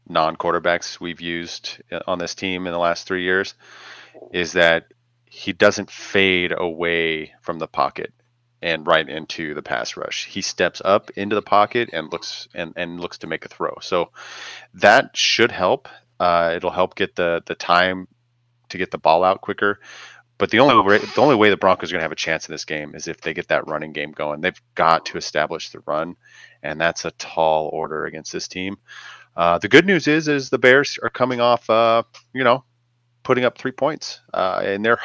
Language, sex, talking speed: English, male, 200 wpm